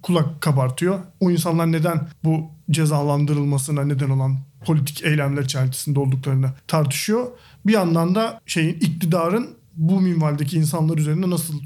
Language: Turkish